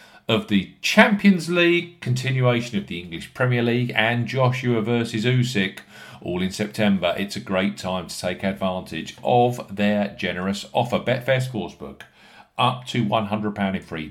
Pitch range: 100-125 Hz